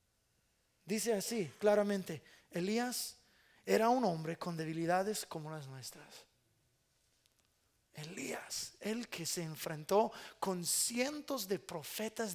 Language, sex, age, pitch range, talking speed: English, male, 30-49, 175-255 Hz, 100 wpm